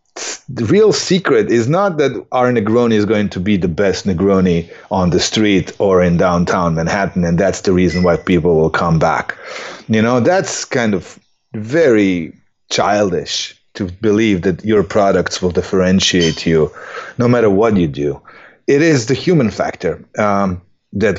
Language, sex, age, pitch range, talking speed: English, male, 30-49, 90-120 Hz, 165 wpm